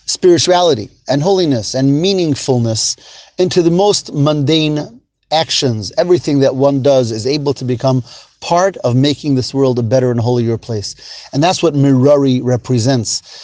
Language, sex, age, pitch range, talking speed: English, male, 30-49, 130-165 Hz, 145 wpm